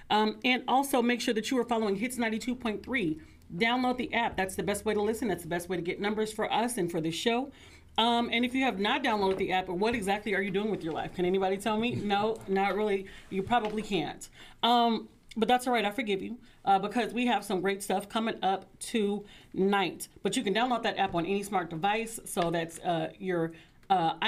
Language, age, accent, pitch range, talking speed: English, 40-59, American, 190-230 Hz, 230 wpm